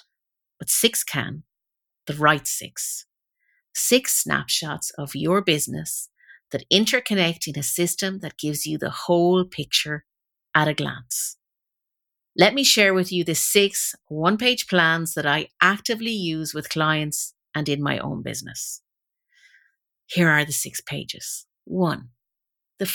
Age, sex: 50-69, female